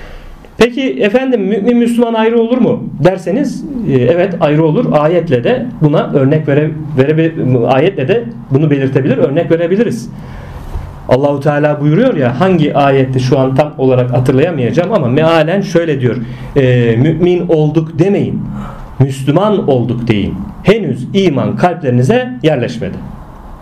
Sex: male